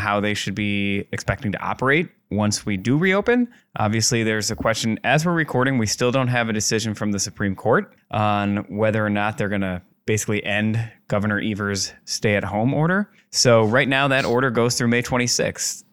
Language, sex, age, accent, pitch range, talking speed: English, male, 20-39, American, 105-125 Hz, 190 wpm